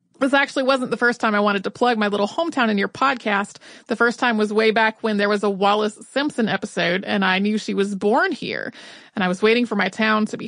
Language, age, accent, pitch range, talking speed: English, 30-49, American, 205-270 Hz, 260 wpm